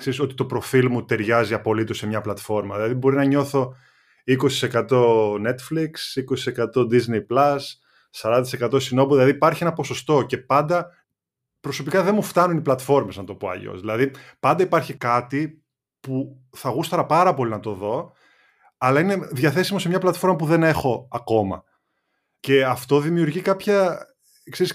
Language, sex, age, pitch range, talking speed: Greek, male, 20-39, 115-155 Hz, 155 wpm